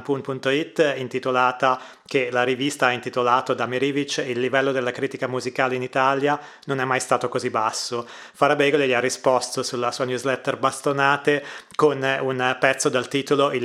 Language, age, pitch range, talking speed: Italian, 30-49, 130-145 Hz, 160 wpm